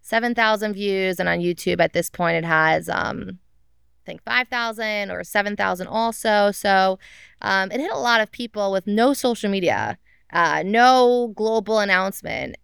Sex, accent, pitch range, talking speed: female, American, 170-205 Hz, 155 wpm